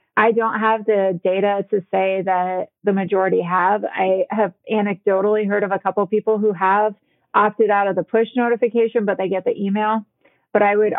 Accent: American